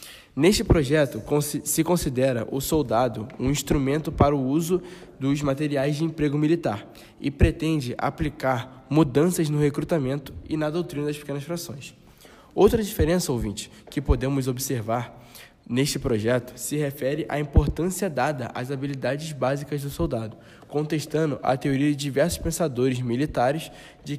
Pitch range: 135-160 Hz